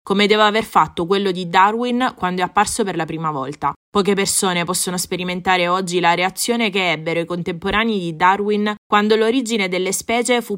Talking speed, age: 180 wpm, 20-39